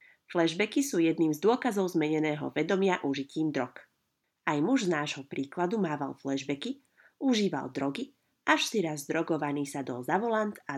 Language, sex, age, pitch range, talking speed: Slovak, female, 30-49, 145-190 Hz, 150 wpm